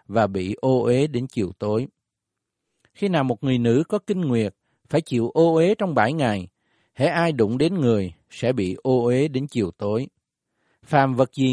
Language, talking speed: Vietnamese, 195 wpm